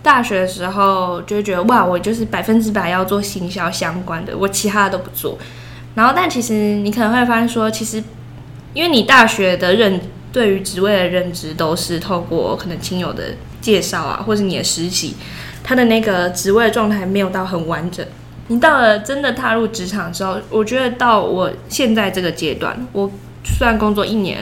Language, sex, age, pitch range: Chinese, female, 20-39, 180-220 Hz